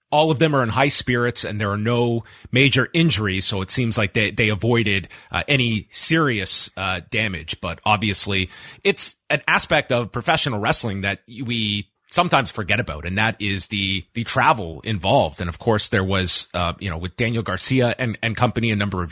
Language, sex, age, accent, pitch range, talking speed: English, male, 30-49, American, 100-125 Hz, 195 wpm